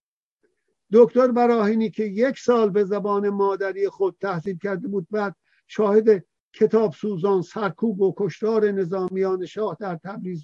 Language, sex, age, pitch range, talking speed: Persian, male, 50-69, 190-220 Hz, 130 wpm